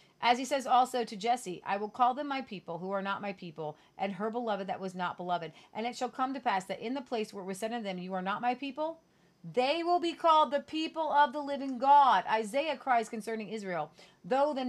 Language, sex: English, female